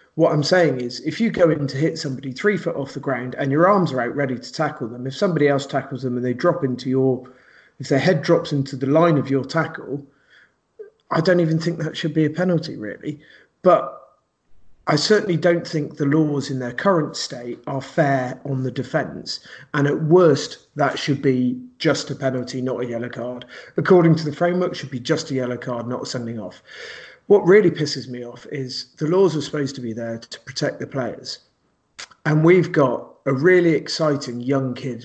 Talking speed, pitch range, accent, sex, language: 210 wpm, 130-160 Hz, British, male, English